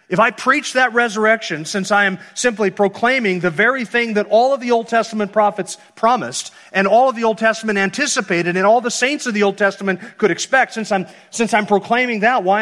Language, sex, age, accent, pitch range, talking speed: English, male, 40-59, American, 140-200 Hz, 210 wpm